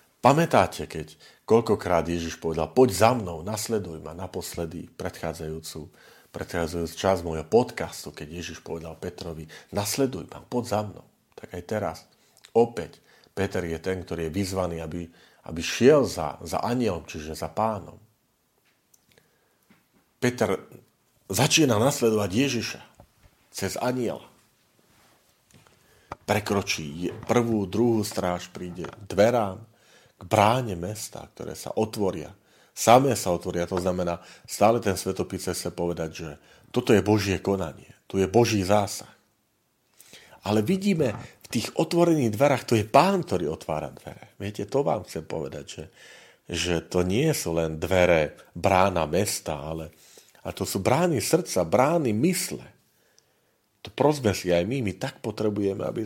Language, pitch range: Slovak, 85-115 Hz